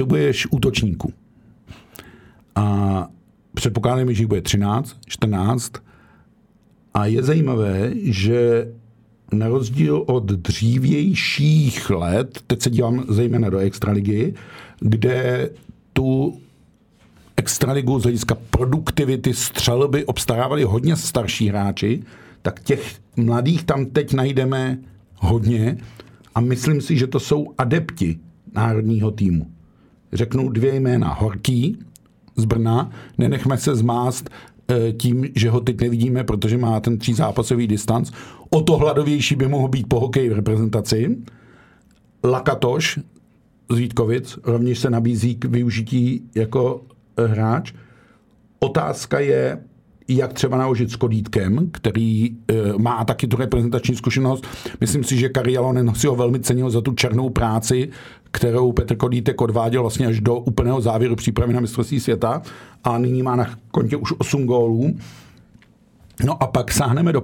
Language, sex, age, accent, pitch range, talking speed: Czech, male, 50-69, native, 115-130 Hz, 130 wpm